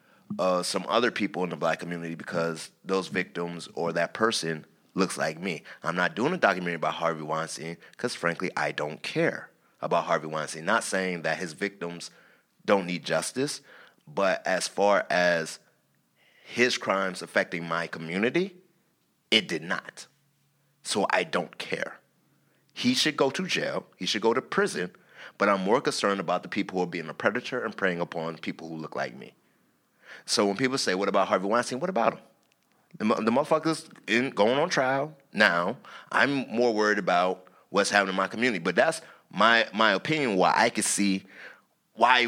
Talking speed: 175 wpm